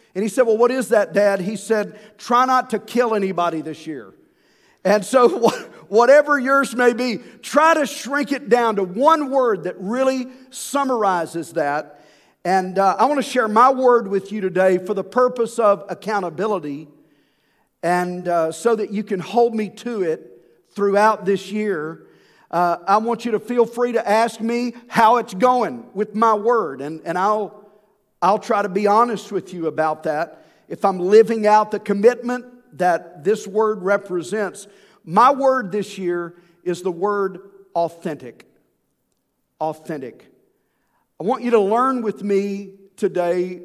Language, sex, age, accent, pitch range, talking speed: English, male, 50-69, American, 180-235 Hz, 165 wpm